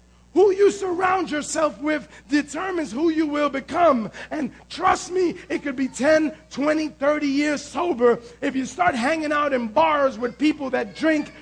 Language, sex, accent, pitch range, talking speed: English, male, American, 255-315 Hz, 170 wpm